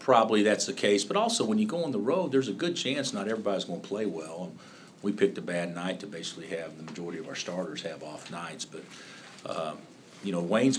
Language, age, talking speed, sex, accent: English, 50-69, 235 wpm, male, American